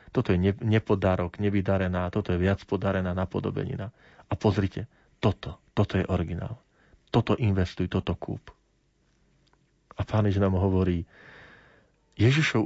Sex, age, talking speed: male, 40-59, 115 wpm